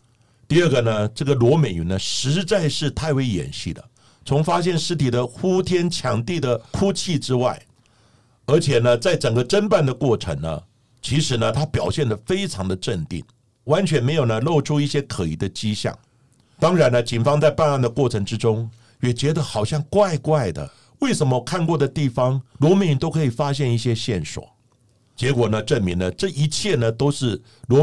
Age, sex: 60-79, male